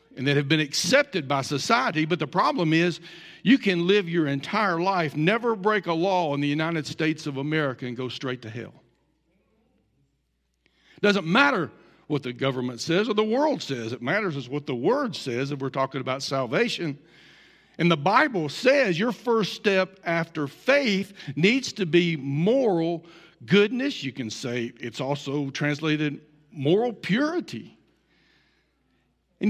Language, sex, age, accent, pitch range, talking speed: English, male, 60-79, American, 145-215 Hz, 155 wpm